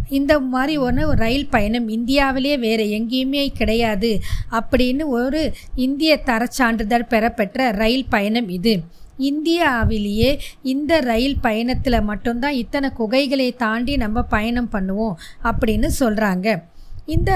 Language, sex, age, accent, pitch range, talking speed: Tamil, female, 20-39, native, 225-270 Hz, 105 wpm